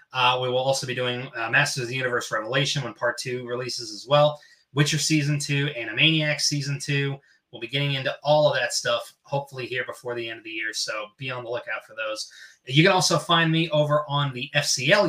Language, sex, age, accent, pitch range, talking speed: English, male, 20-39, American, 125-155 Hz, 225 wpm